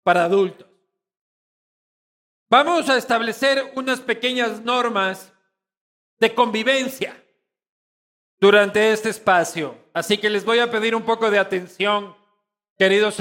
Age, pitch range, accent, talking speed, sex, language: 50-69, 170-220 Hz, Mexican, 110 wpm, male, Spanish